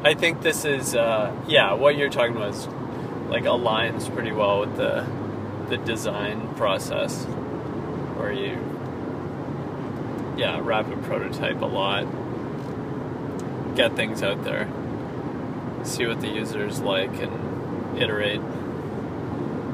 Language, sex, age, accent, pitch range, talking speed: English, male, 20-39, American, 115-140 Hz, 120 wpm